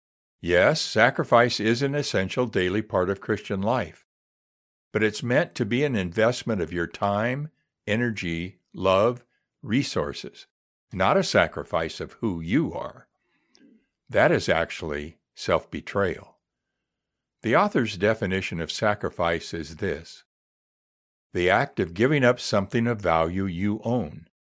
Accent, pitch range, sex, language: American, 85-120 Hz, male, English